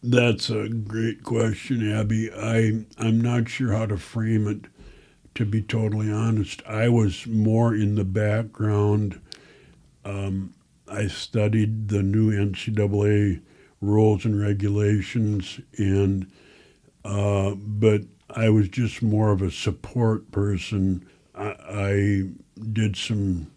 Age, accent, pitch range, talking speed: 60-79, American, 95-110 Hz, 120 wpm